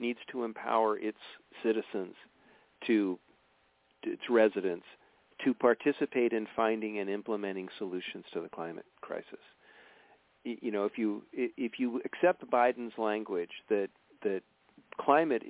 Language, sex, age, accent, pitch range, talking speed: English, male, 50-69, American, 105-130 Hz, 125 wpm